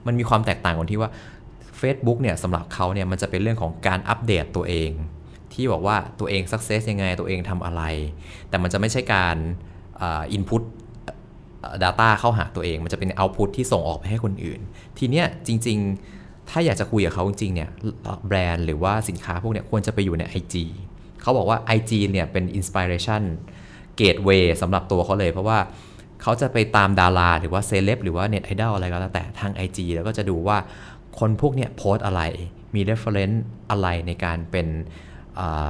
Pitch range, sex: 90-110 Hz, male